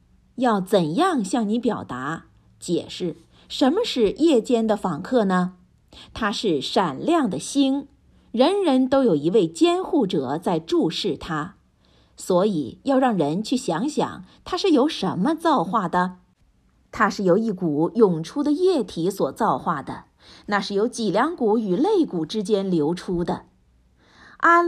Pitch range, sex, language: 175-285 Hz, female, Chinese